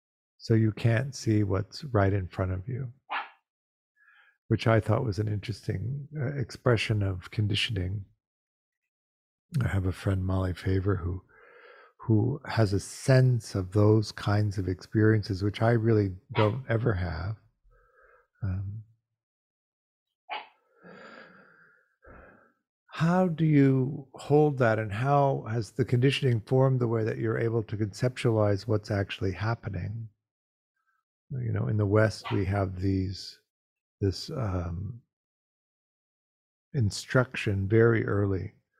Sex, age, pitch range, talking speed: male, 50-69, 100-125 Hz, 120 wpm